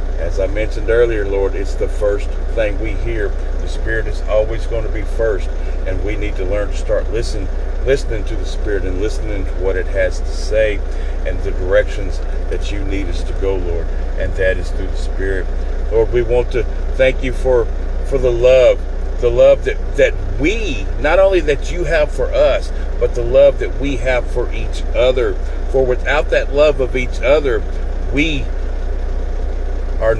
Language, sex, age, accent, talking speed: English, male, 50-69, American, 190 wpm